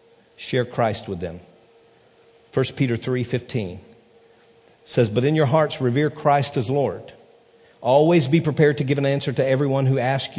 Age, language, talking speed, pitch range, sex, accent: 50-69, English, 155 wpm, 110-140 Hz, male, American